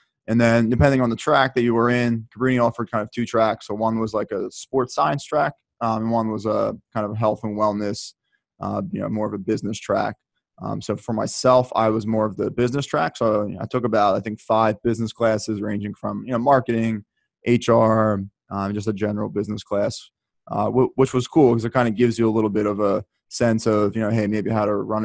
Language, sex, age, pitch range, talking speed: English, male, 20-39, 105-115 Hz, 235 wpm